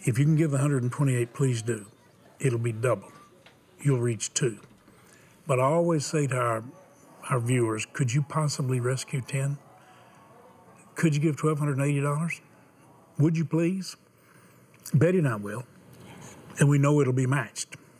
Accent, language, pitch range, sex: American, English, 115-150 Hz, male